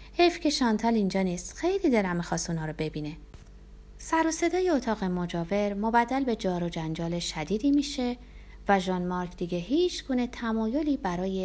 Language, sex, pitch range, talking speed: Persian, female, 175-250 Hz, 160 wpm